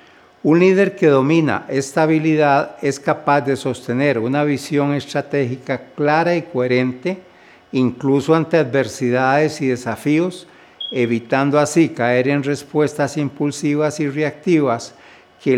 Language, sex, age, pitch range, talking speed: Spanish, male, 60-79, 130-155 Hz, 115 wpm